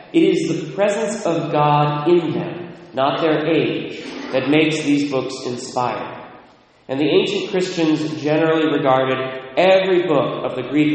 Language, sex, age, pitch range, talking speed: English, male, 30-49, 130-170 Hz, 150 wpm